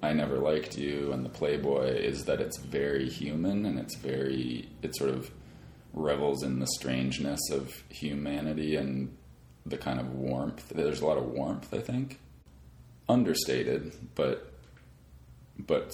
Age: 30-49